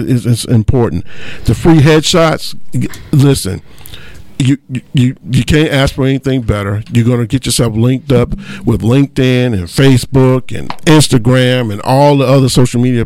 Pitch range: 110-130 Hz